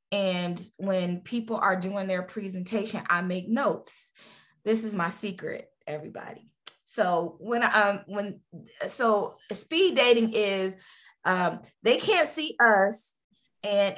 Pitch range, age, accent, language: 185-230 Hz, 20-39, American, English